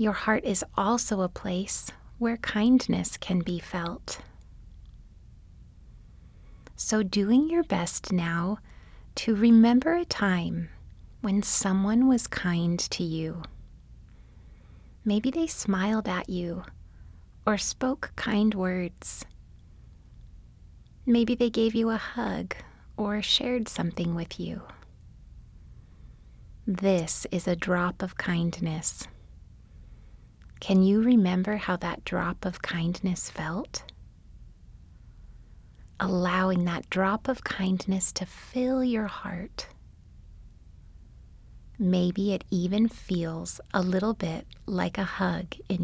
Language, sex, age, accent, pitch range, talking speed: English, female, 30-49, American, 160-210 Hz, 105 wpm